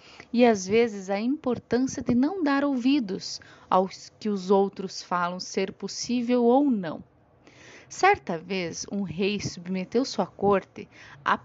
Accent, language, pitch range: Brazilian, Portuguese, 180-235 Hz